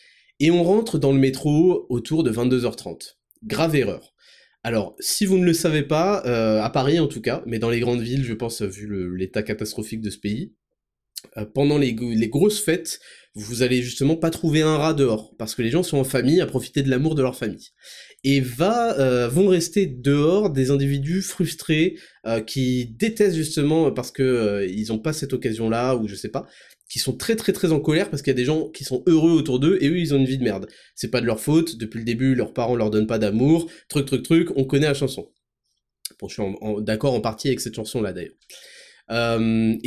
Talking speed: 230 wpm